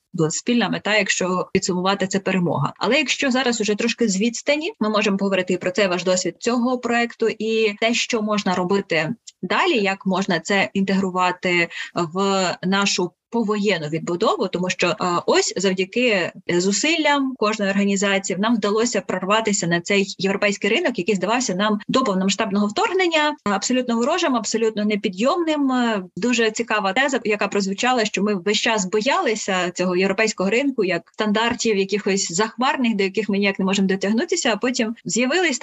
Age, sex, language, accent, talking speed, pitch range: 20-39, female, Ukrainian, native, 150 wpm, 195-240 Hz